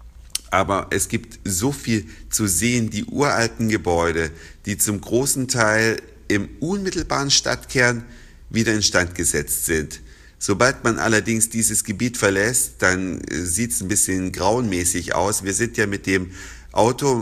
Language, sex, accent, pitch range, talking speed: German, male, German, 95-125 Hz, 140 wpm